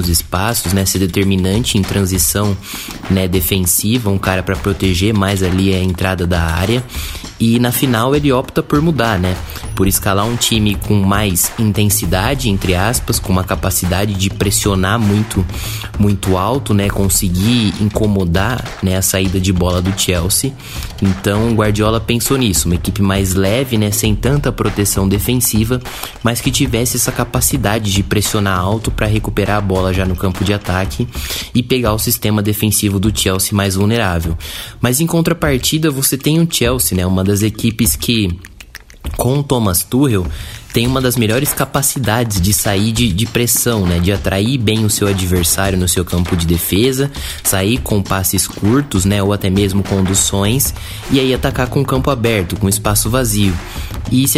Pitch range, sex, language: 95-115 Hz, male, Portuguese